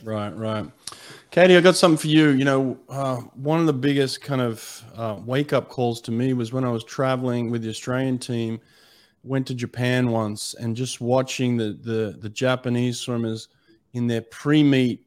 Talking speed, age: 185 wpm, 30-49